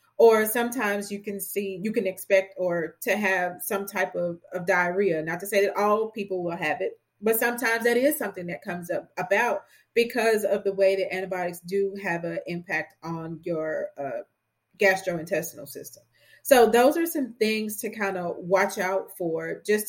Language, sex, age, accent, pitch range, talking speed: English, female, 30-49, American, 180-220 Hz, 185 wpm